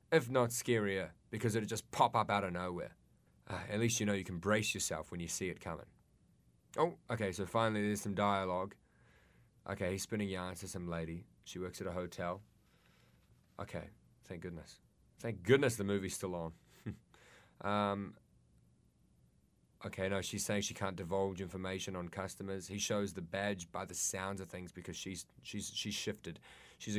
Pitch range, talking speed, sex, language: 90-110 Hz, 170 wpm, male, English